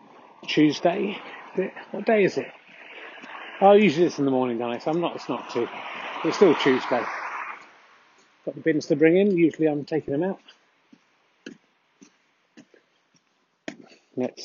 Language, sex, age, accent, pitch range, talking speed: English, male, 40-59, British, 140-205 Hz, 135 wpm